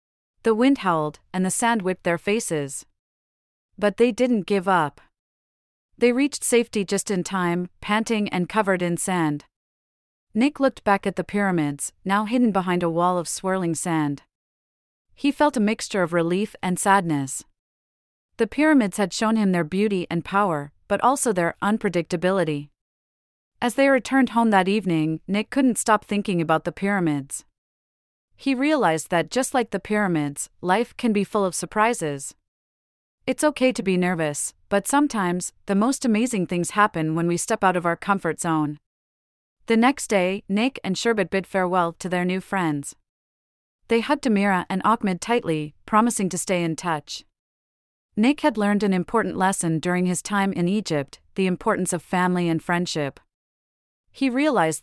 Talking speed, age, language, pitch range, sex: 160 wpm, 30-49, English, 160-215 Hz, female